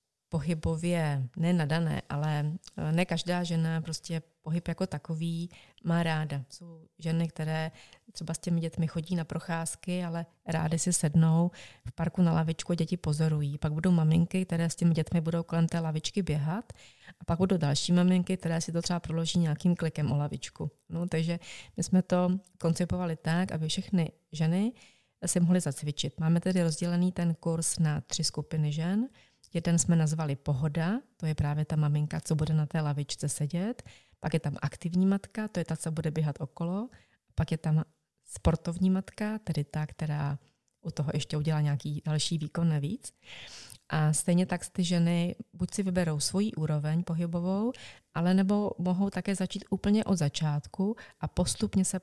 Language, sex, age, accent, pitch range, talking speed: Czech, female, 30-49, native, 155-180 Hz, 165 wpm